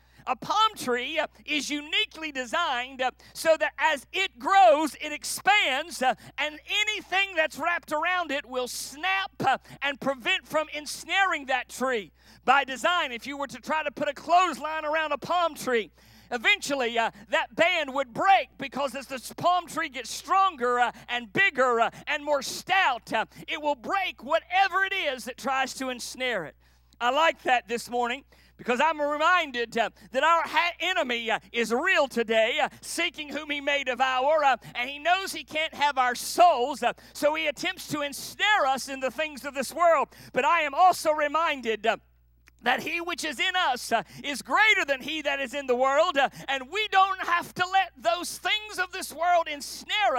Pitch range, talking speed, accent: 255-340 Hz, 180 wpm, American